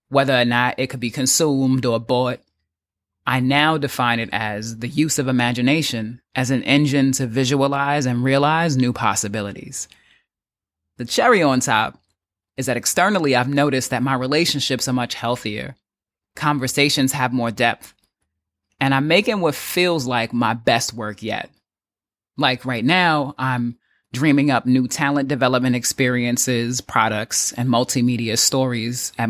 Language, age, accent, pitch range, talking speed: English, 30-49, American, 115-135 Hz, 145 wpm